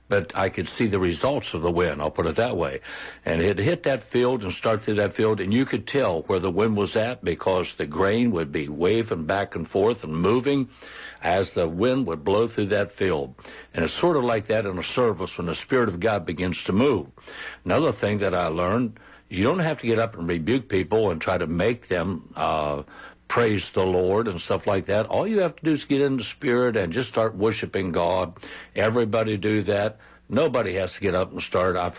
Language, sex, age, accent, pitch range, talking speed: English, male, 60-79, American, 95-120 Hz, 230 wpm